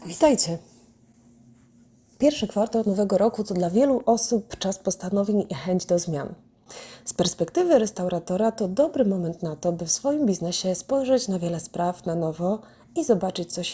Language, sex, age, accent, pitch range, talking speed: Polish, female, 30-49, native, 165-230 Hz, 155 wpm